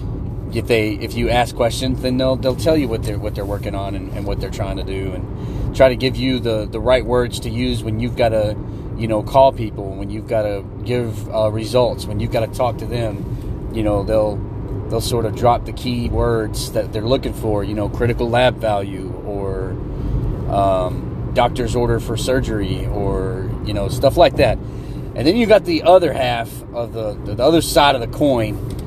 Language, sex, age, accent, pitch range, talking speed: English, male, 30-49, American, 110-135 Hz, 215 wpm